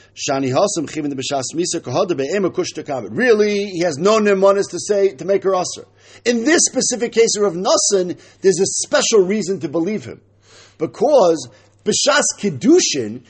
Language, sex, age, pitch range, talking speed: English, male, 50-69, 155-235 Hz, 120 wpm